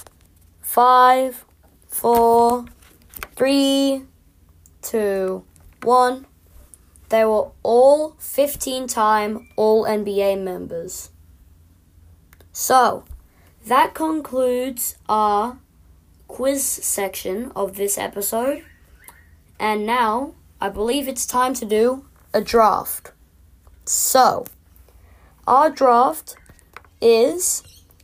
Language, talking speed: English, 75 wpm